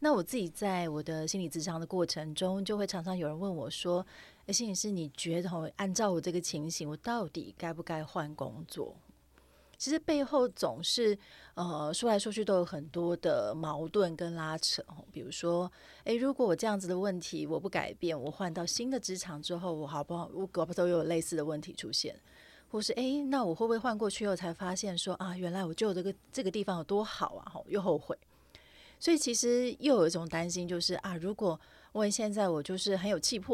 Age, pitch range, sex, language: 40-59, 165-210 Hz, female, Chinese